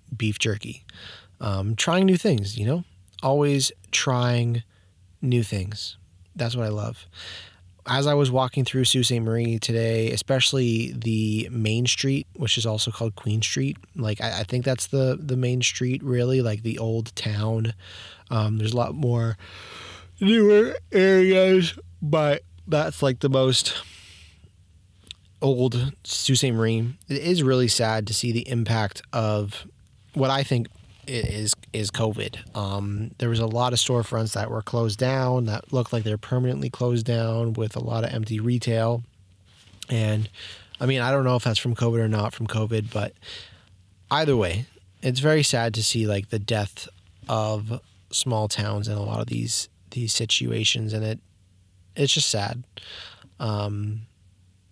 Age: 20-39